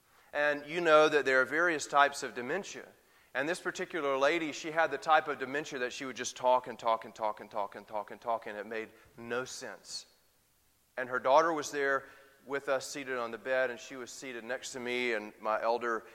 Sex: male